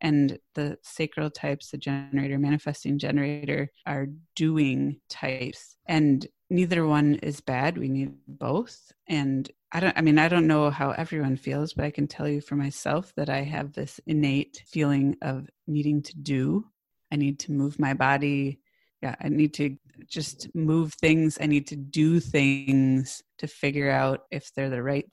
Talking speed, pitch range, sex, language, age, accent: 170 wpm, 140-155 Hz, female, English, 30-49, American